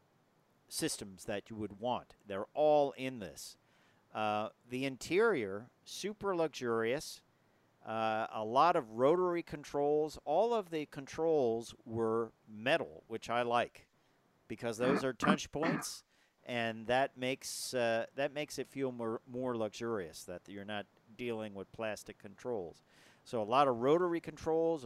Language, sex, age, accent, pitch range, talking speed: English, male, 50-69, American, 110-145 Hz, 140 wpm